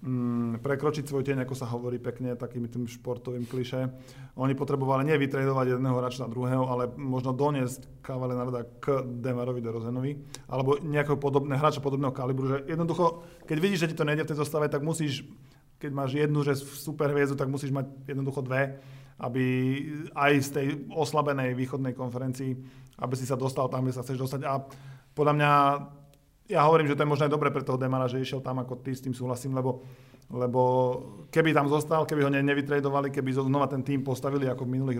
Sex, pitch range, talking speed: male, 125-140 Hz, 190 wpm